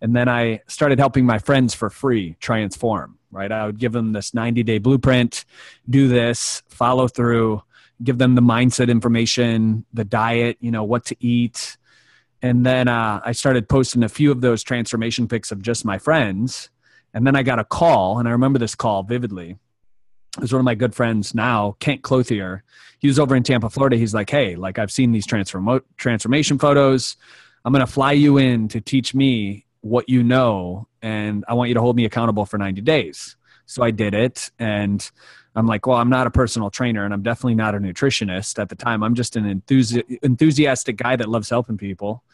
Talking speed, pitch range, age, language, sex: 205 wpm, 110-125 Hz, 30-49, English, male